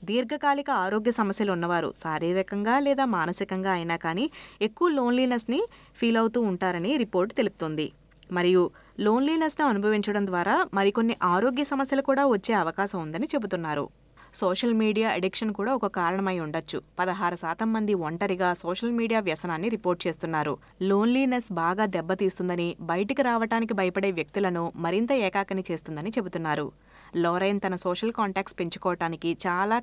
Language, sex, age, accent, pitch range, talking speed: Telugu, female, 20-39, native, 175-230 Hz, 125 wpm